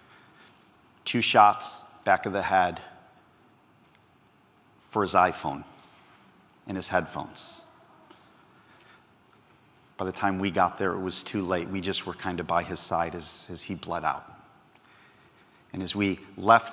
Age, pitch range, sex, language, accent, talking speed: 40-59, 100-145 Hz, male, English, American, 140 wpm